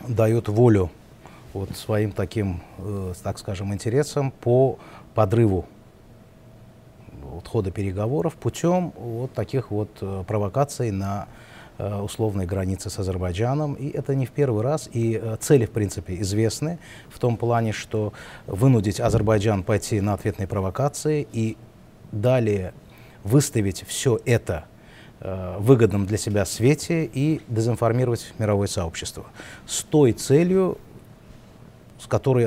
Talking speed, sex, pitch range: 120 wpm, male, 100-125 Hz